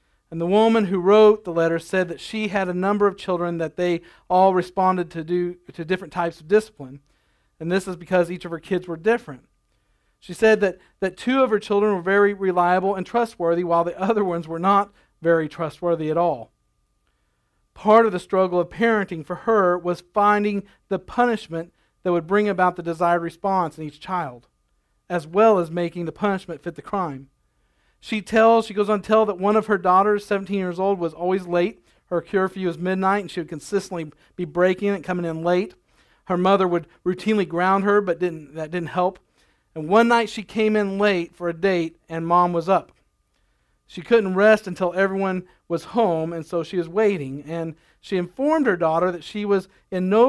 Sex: male